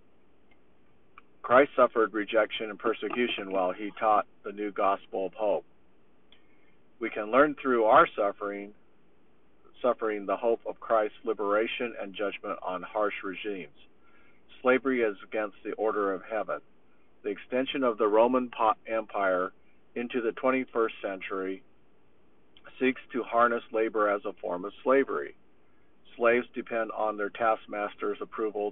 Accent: American